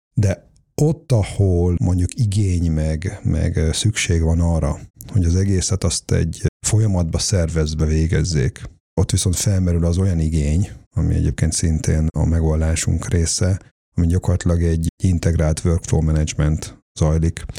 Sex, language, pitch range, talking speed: male, Hungarian, 80-95 Hz, 125 wpm